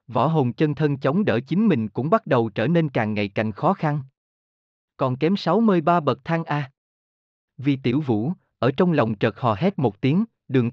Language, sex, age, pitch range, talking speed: Vietnamese, male, 20-39, 115-175 Hz, 215 wpm